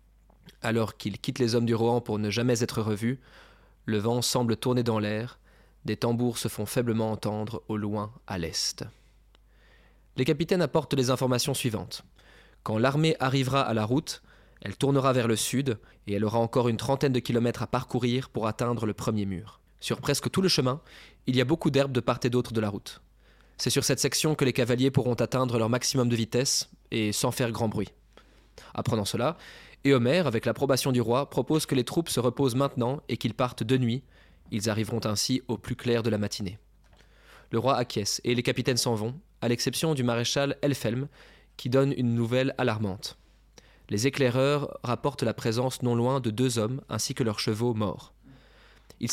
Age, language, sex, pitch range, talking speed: 20-39, French, male, 110-135 Hz, 195 wpm